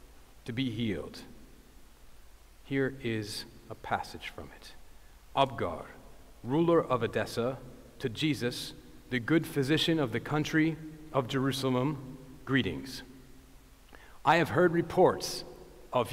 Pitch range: 125-155 Hz